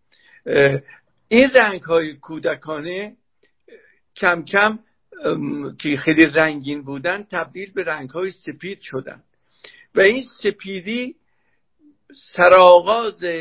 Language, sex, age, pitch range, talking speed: Persian, male, 50-69, 160-205 Hz, 80 wpm